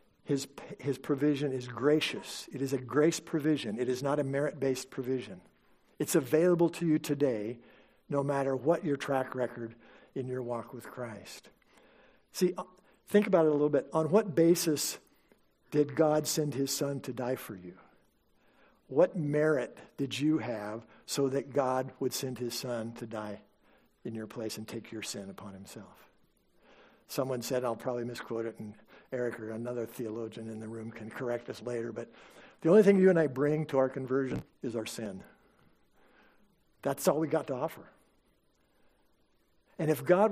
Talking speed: 170 wpm